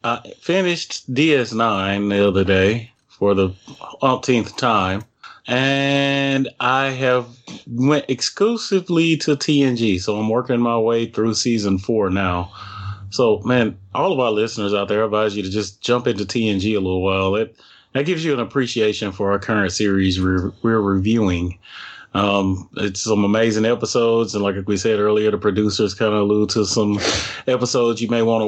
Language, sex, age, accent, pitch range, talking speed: English, male, 30-49, American, 100-125 Hz, 165 wpm